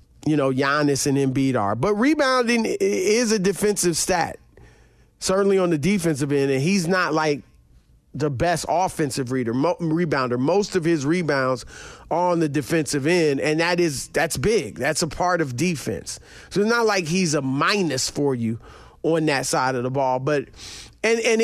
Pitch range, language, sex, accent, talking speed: 150-225 Hz, English, male, American, 180 wpm